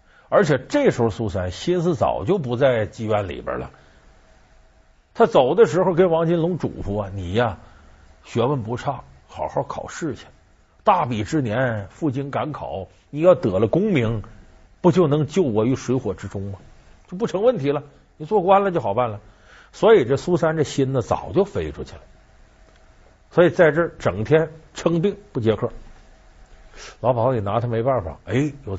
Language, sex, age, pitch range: Chinese, male, 50-69, 95-150 Hz